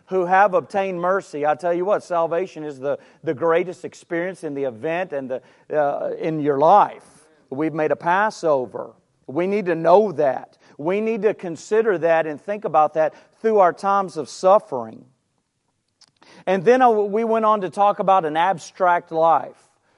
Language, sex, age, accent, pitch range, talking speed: English, male, 40-59, American, 160-205 Hz, 170 wpm